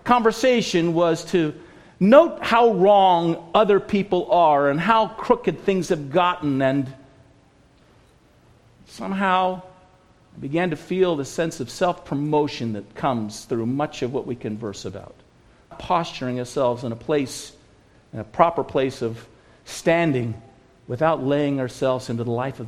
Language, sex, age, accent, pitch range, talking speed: English, male, 50-69, American, 125-165 Hz, 140 wpm